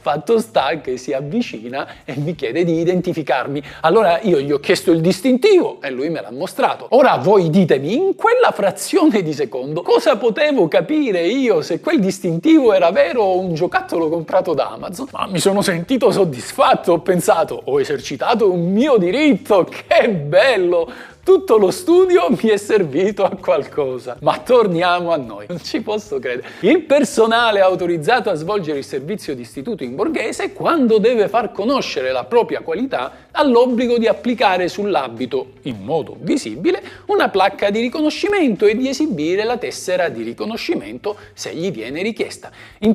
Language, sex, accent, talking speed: Italian, male, native, 165 wpm